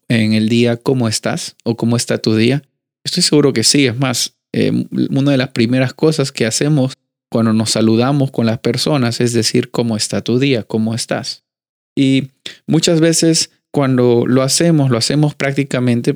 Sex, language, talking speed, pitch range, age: male, Spanish, 175 wpm, 110-140 Hz, 30-49